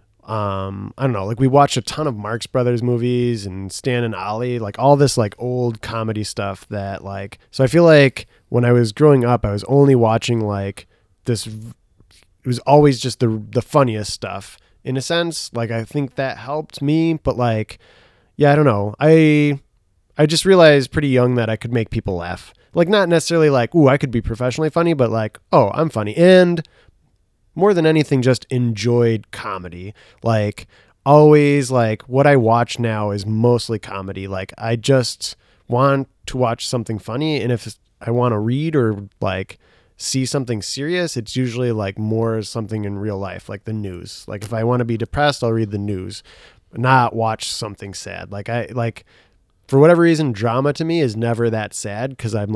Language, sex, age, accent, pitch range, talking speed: English, male, 20-39, American, 105-135 Hz, 195 wpm